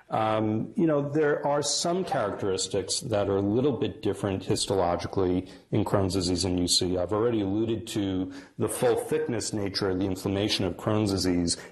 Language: English